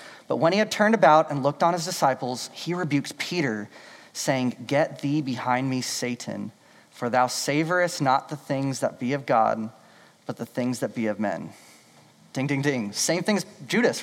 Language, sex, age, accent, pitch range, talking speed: English, male, 30-49, American, 135-175 Hz, 190 wpm